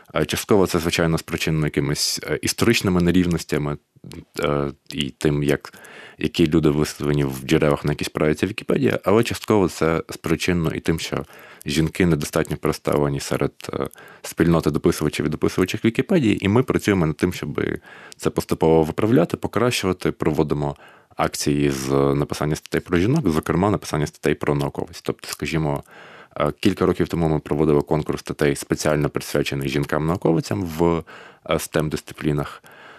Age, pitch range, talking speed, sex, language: 20-39, 75-85 Hz, 130 wpm, male, Ukrainian